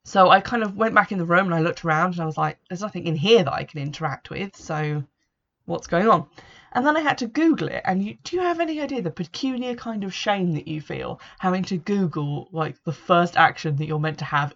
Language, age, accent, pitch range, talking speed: English, 20-39, British, 155-210 Hz, 260 wpm